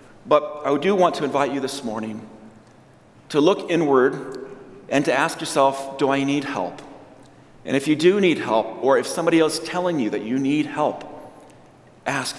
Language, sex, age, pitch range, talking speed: English, male, 40-59, 125-165 Hz, 185 wpm